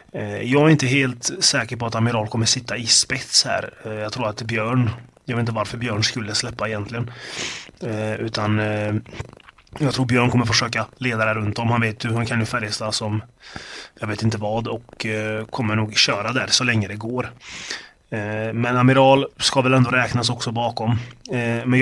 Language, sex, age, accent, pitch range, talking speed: Swedish, male, 30-49, native, 110-125 Hz, 175 wpm